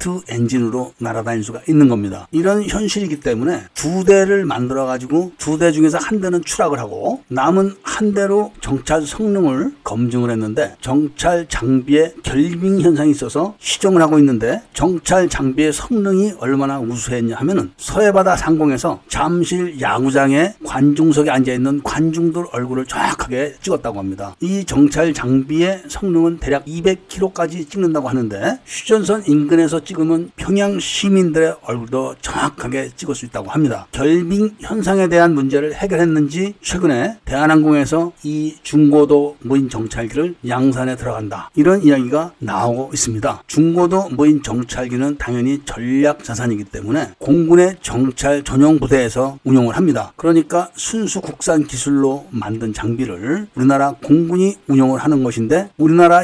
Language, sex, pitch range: Korean, male, 130-175 Hz